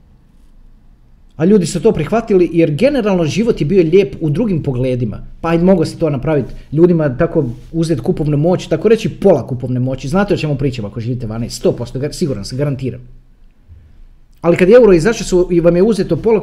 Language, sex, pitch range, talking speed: Croatian, male, 125-200 Hz, 185 wpm